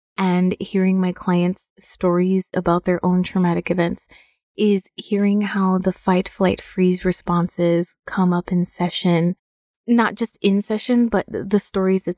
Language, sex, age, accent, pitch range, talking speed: English, female, 20-39, American, 170-195 Hz, 150 wpm